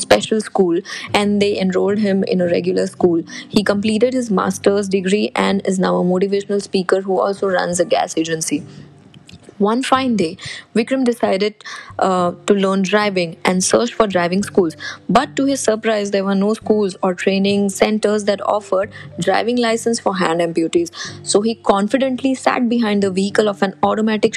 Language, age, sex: Hindi, 20-39, female